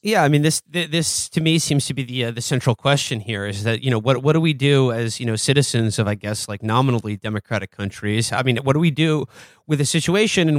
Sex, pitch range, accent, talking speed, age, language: male, 110-140 Hz, American, 260 wpm, 30-49, English